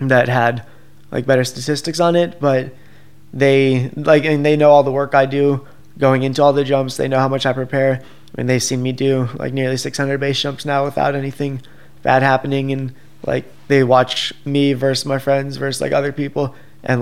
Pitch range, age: 130-140 Hz, 20-39